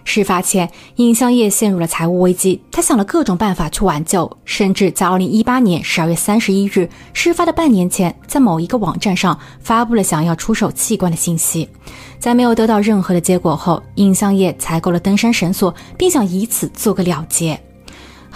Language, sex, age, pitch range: Chinese, female, 20-39, 175-220 Hz